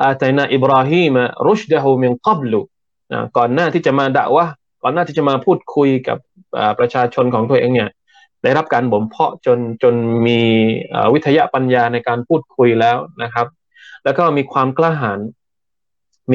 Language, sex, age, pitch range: Thai, male, 20-39, 120-160 Hz